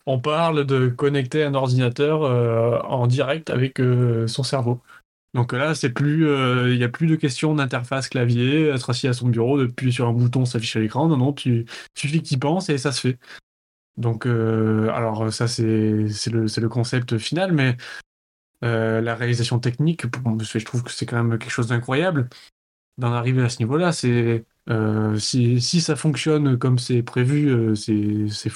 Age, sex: 20-39, male